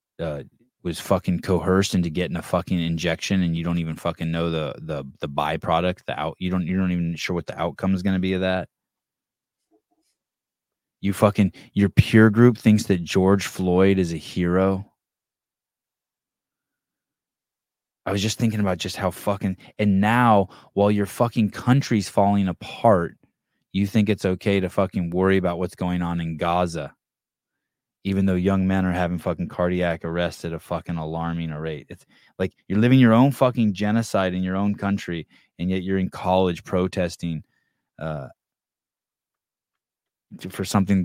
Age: 20-39